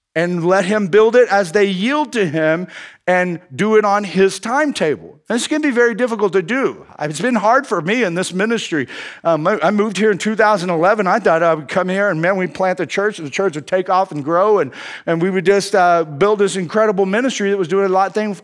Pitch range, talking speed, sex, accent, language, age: 190-240 Hz, 245 wpm, male, American, English, 50-69